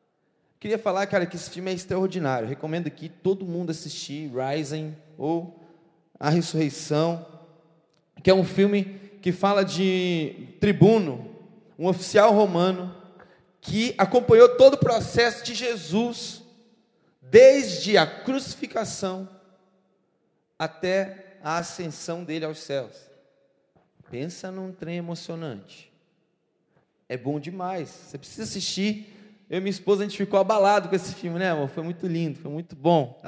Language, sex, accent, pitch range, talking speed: Portuguese, male, Brazilian, 160-210 Hz, 135 wpm